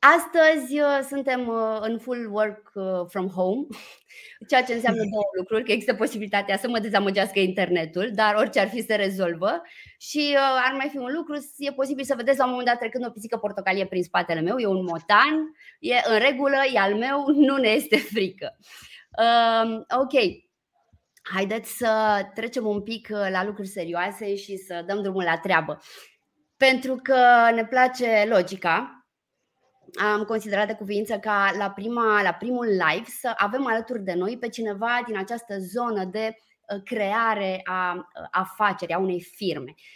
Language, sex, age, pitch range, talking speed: Romanian, female, 20-39, 200-255 Hz, 160 wpm